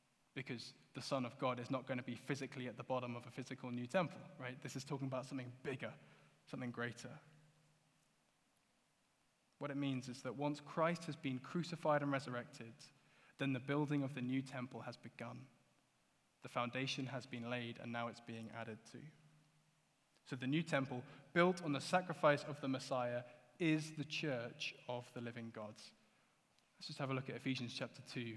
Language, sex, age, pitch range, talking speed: English, male, 20-39, 130-165 Hz, 180 wpm